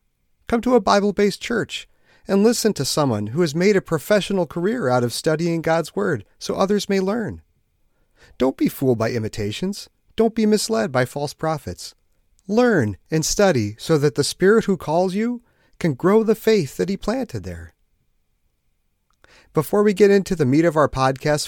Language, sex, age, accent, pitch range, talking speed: English, male, 40-59, American, 115-185 Hz, 175 wpm